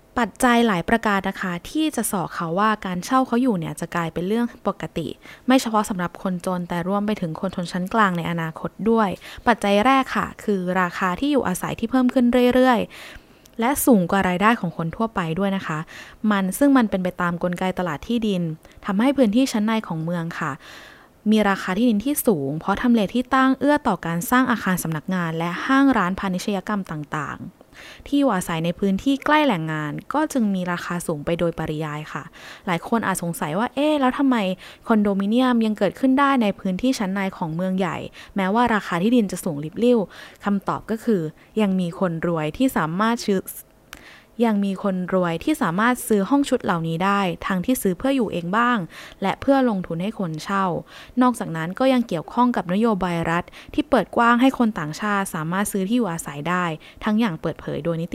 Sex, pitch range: female, 175-235 Hz